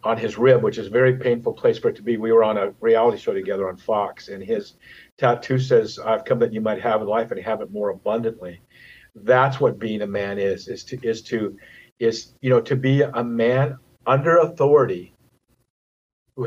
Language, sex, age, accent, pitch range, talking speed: English, male, 50-69, American, 115-140 Hz, 215 wpm